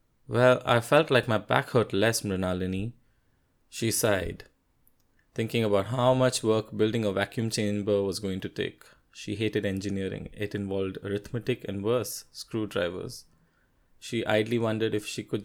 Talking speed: 150 wpm